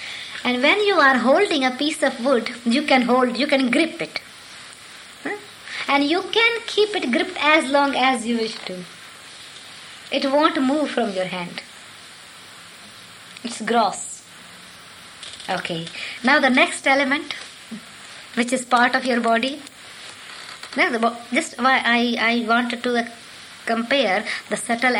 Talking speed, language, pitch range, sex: 135 wpm, English, 210-275 Hz, male